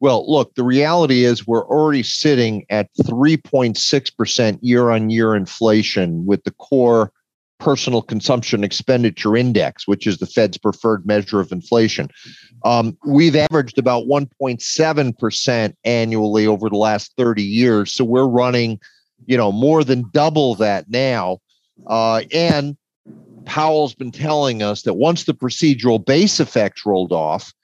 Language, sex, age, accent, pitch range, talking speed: English, male, 40-59, American, 110-145 Hz, 135 wpm